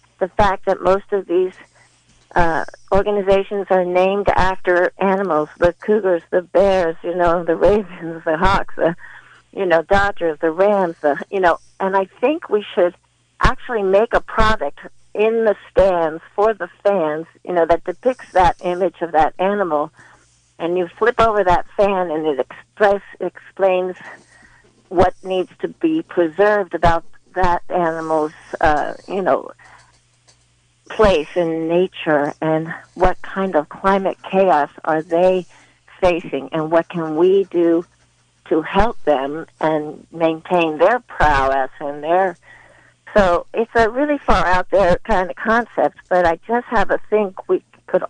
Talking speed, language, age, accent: 145 wpm, English, 50-69, American